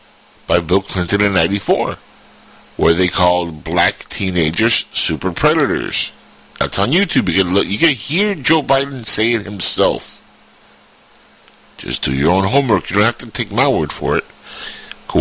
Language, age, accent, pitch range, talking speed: English, 50-69, American, 85-115 Hz, 160 wpm